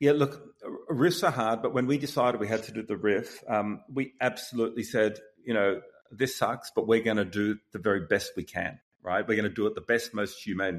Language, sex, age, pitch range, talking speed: English, male, 40-59, 105-125 Hz, 240 wpm